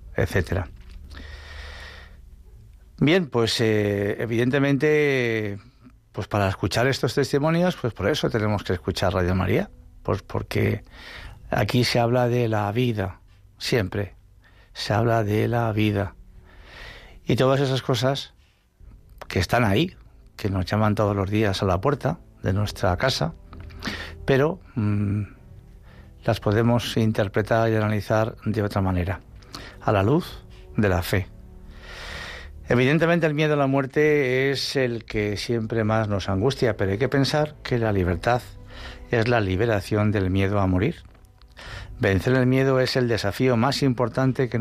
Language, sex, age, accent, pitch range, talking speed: Spanish, male, 60-79, Spanish, 95-125 Hz, 135 wpm